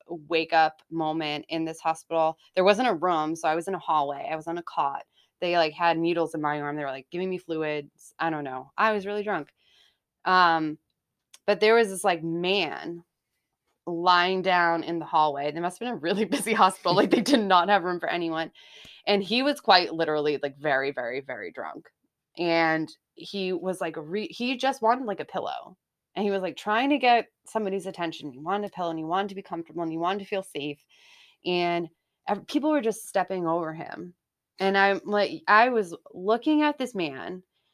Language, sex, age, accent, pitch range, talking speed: English, female, 20-39, American, 165-205 Hz, 205 wpm